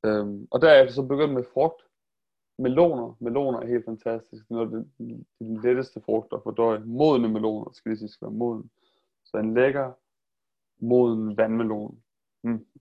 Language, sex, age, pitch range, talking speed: Danish, male, 30-49, 110-130 Hz, 140 wpm